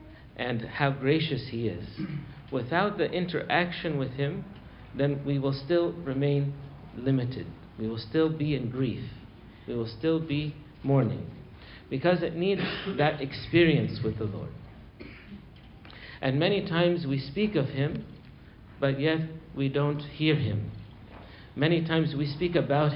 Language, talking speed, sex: English, 140 wpm, male